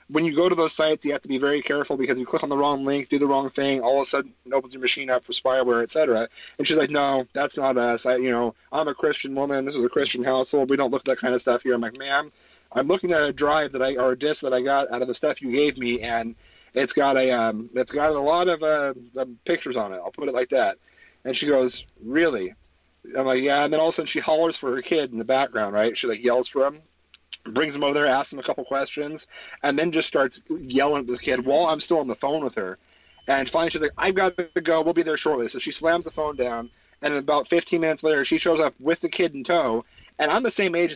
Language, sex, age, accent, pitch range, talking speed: English, male, 30-49, American, 130-155 Hz, 285 wpm